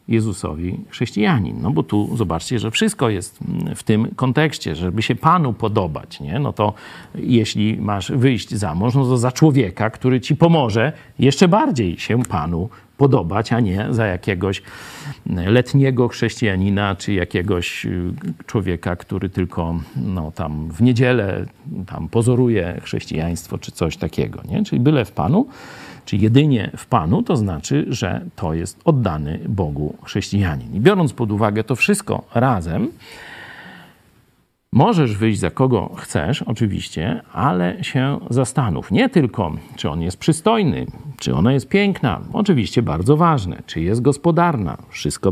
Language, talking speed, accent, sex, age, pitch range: Polish, 145 wpm, native, male, 50-69, 100-135 Hz